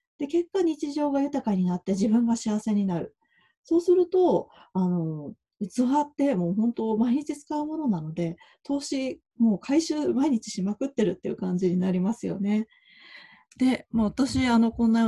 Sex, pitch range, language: female, 190-260 Hz, Japanese